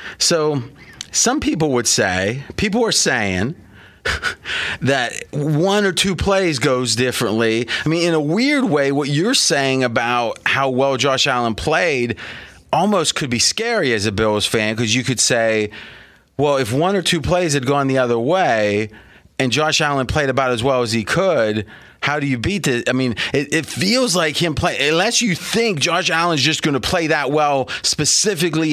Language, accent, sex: English, American, male